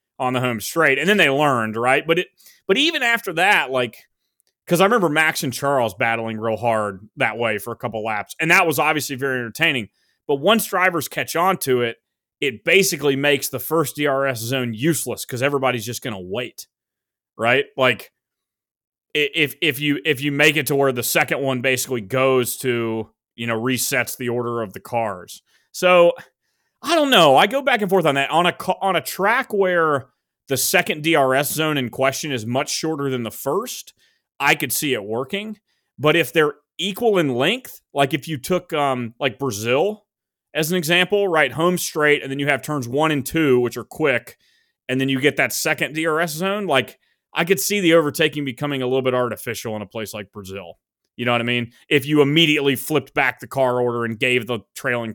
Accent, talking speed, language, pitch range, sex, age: American, 205 wpm, English, 125-165 Hz, male, 30-49